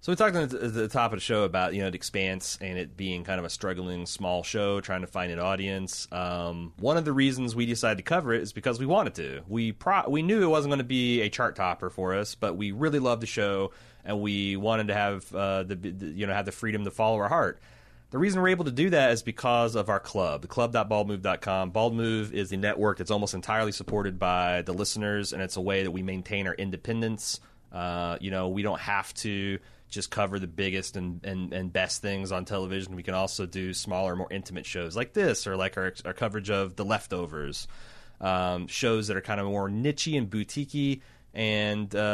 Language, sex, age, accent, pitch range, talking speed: English, male, 30-49, American, 95-115 Hz, 230 wpm